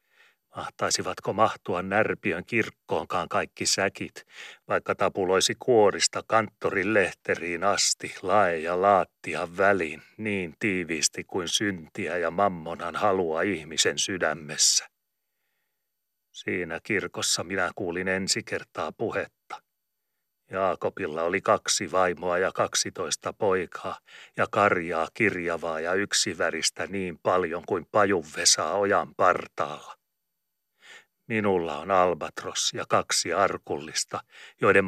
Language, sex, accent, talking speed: Finnish, male, native, 95 wpm